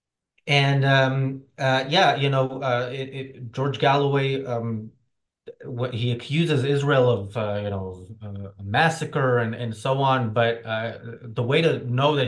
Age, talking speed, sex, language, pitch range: 20-39, 160 wpm, male, English, 110-130 Hz